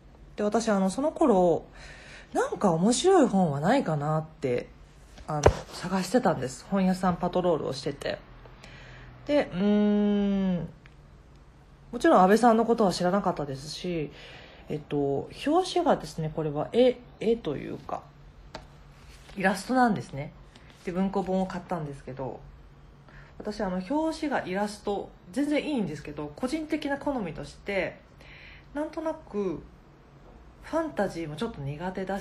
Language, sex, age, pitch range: Japanese, female, 40-59, 155-240 Hz